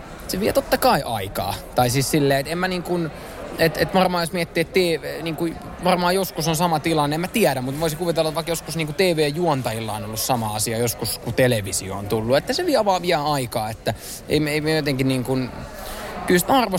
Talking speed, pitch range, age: 215 wpm, 120-155 Hz, 20-39